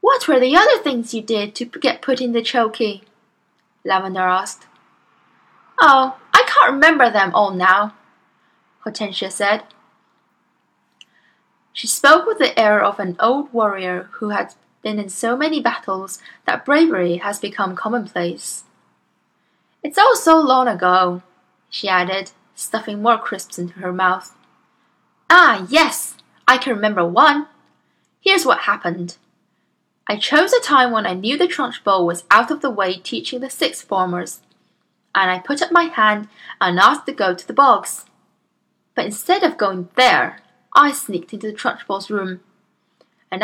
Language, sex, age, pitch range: Chinese, female, 10-29, 190-275 Hz